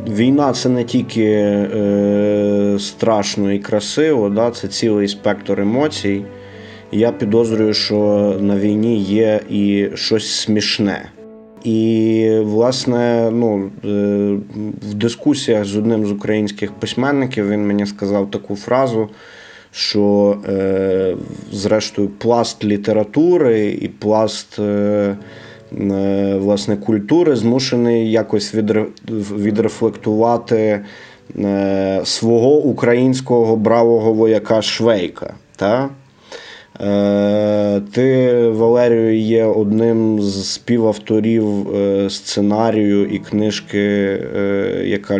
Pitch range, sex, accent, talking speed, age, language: 100-115 Hz, male, native, 90 wpm, 20-39, Ukrainian